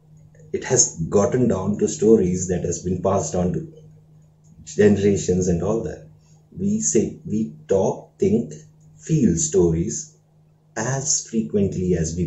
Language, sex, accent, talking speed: English, male, Indian, 130 wpm